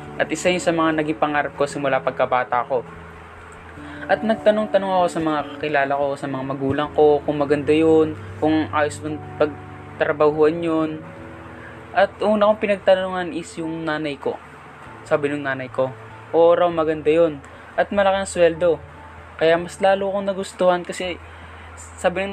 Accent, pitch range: native, 135-175 Hz